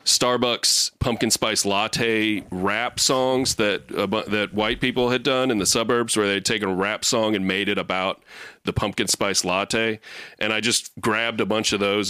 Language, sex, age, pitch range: English, male, 30-49, 95-115 Hz